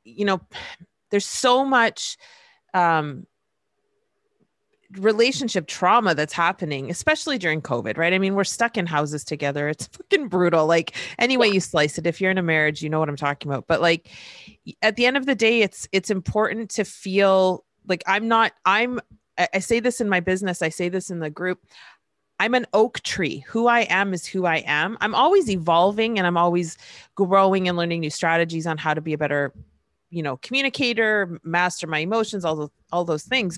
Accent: American